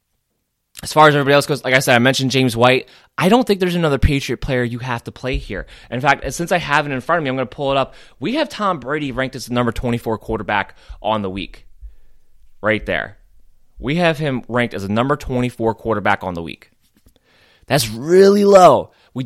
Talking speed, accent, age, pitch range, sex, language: 225 wpm, American, 20-39, 130-160 Hz, male, English